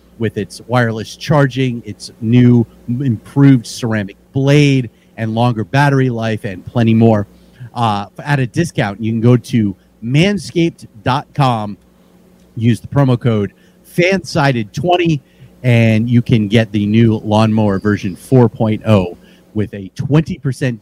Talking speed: 120 wpm